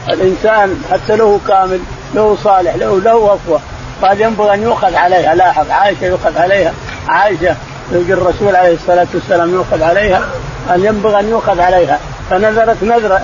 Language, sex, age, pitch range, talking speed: Arabic, male, 50-69, 180-220 Hz, 150 wpm